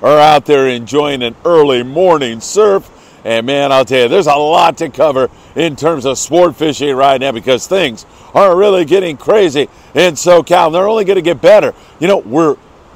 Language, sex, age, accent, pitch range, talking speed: English, male, 50-69, American, 130-165 Hz, 195 wpm